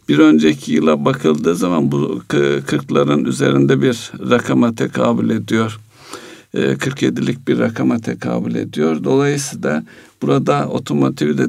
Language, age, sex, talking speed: Turkish, 60-79, male, 105 wpm